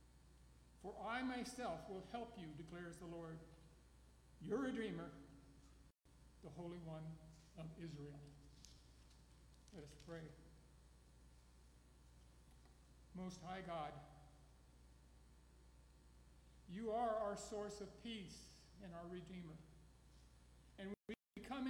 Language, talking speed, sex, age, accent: English, 95 wpm, male, 60-79, American